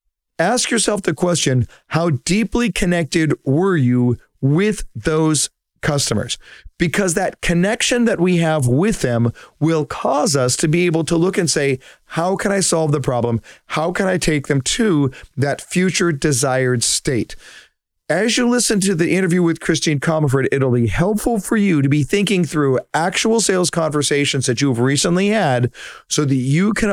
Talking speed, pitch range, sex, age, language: 165 wpm, 135-175 Hz, male, 40-59, English